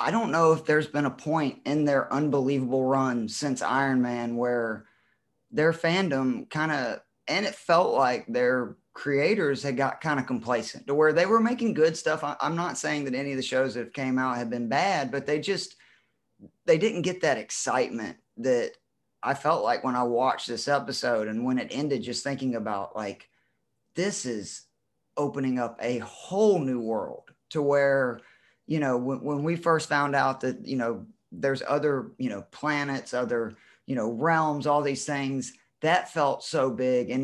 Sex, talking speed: male, 185 wpm